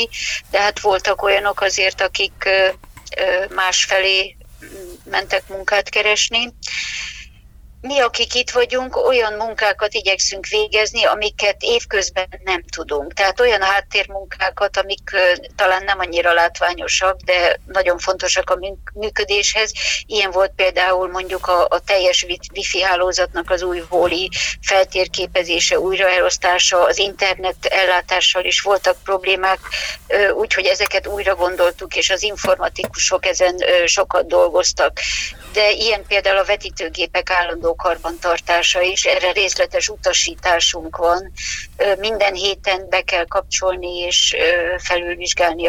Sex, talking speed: female, 110 wpm